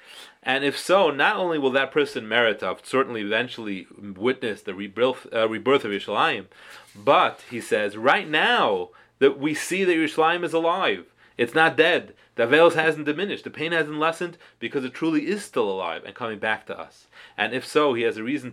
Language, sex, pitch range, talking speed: English, male, 110-150 Hz, 190 wpm